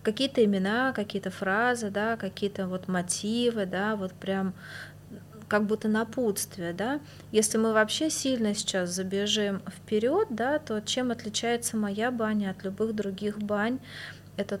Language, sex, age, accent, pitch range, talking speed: Russian, female, 20-39, native, 195-230 Hz, 125 wpm